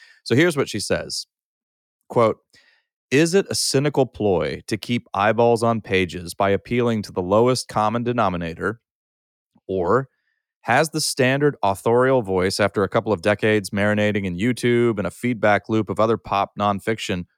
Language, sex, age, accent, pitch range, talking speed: English, male, 30-49, American, 100-120 Hz, 155 wpm